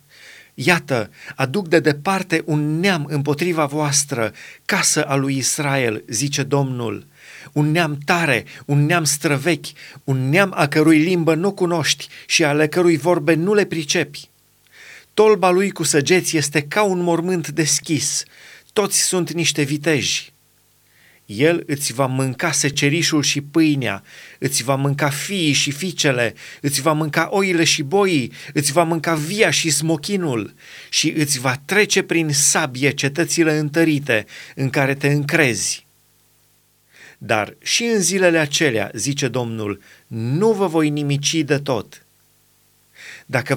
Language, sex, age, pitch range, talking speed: Romanian, male, 30-49, 140-170 Hz, 135 wpm